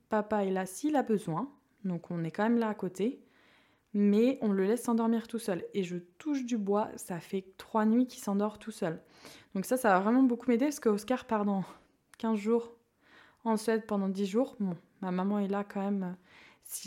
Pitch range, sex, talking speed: 190-230 Hz, female, 215 wpm